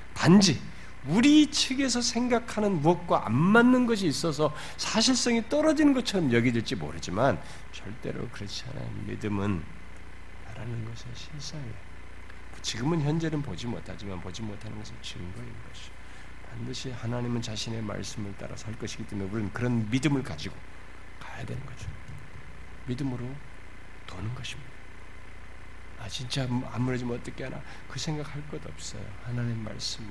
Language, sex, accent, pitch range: Korean, male, native, 95-150 Hz